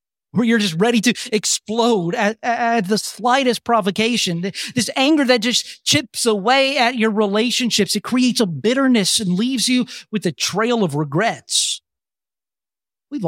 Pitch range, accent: 155-225 Hz, American